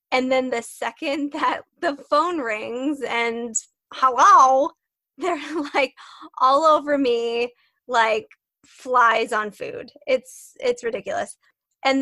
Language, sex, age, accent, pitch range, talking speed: English, female, 20-39, American, 230-290 Hz, 115 wpm